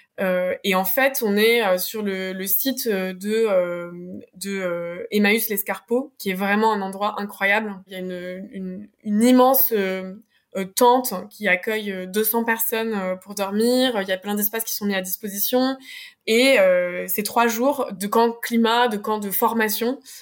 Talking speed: 170 wpm